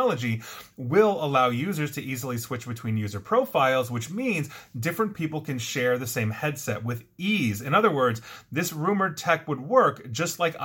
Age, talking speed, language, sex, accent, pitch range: 30-49, 175 wpm, English, male, American, 115-155 Hz